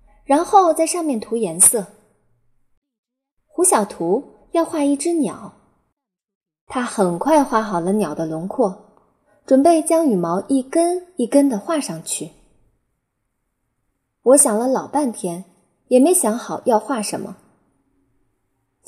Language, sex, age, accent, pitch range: Chinese, female, 20-39, native, 200-280 Hz